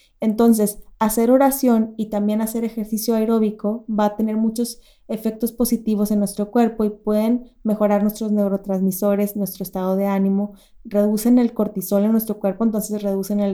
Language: Spanish